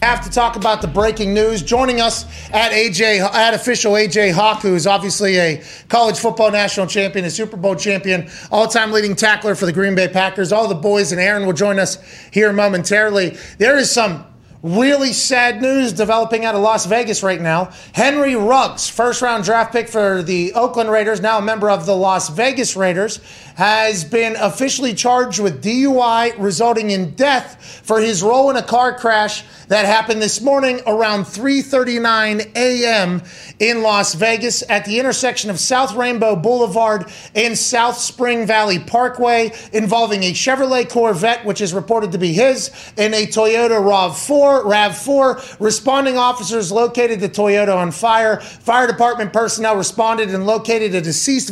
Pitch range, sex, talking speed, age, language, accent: 200-235 Hz, male, 165 wpm, 30-49, English, American